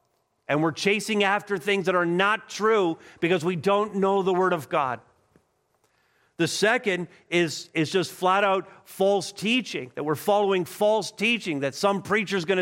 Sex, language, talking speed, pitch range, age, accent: male, English, 165 wpm, 120-185 Hz, 50-69, American